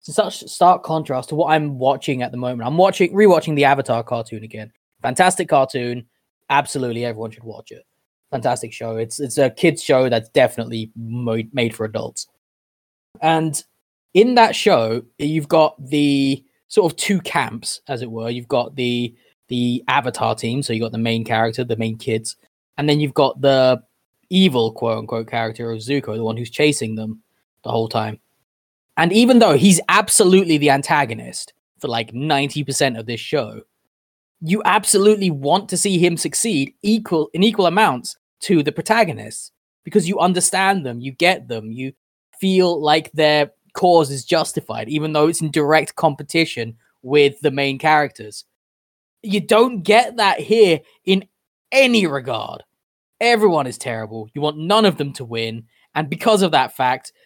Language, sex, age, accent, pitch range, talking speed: English, male, 20-39, British, 115-175 Hz, 165 wpm